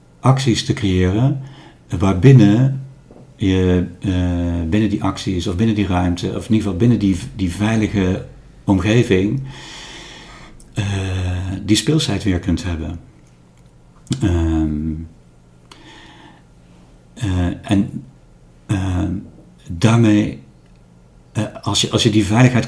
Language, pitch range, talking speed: Dutch, 85-110 Hz, 100 wpm